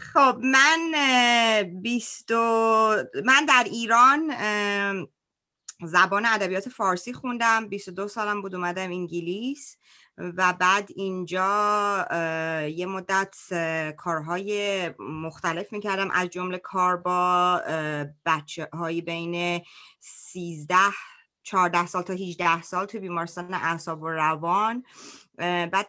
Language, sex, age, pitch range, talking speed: Persian, female, 30-49, 175-225 Hz, 95 wpm